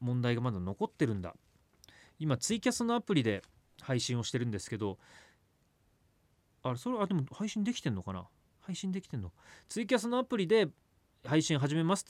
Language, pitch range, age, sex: Japanese, 105-170 Hz, 30-49, male